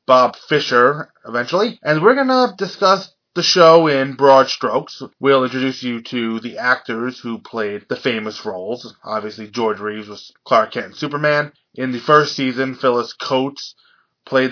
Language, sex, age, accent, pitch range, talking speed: English, male, 20-39, American, 120-175 Hz, 160 wpm